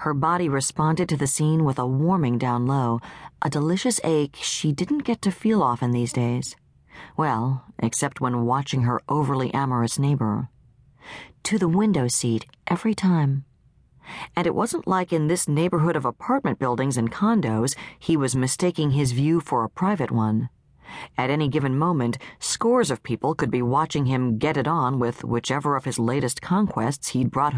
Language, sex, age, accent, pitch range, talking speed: English, female, 40-59, American, 125-170 Hz, 170 wpm